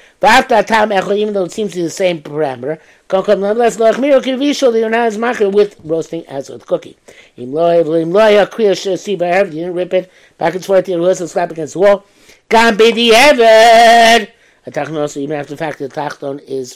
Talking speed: 155 wpm